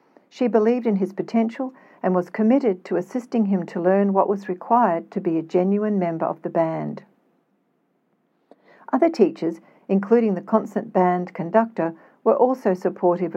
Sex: female